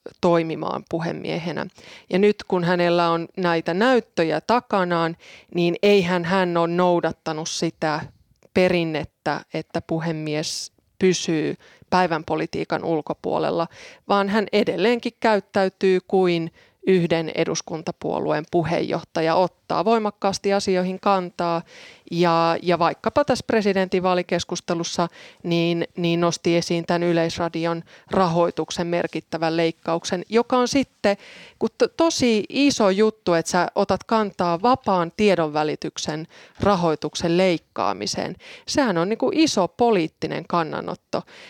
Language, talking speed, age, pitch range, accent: Finnish, 100 wpm, 20-39, 165-195 Hz, native